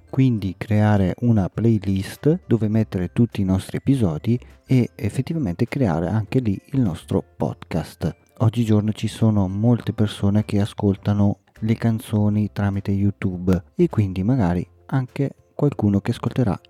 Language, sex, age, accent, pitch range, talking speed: Italian, male, 40-59, native, 95-115 Hz, 130 wpm